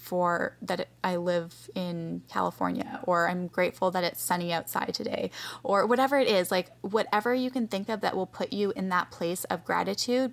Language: English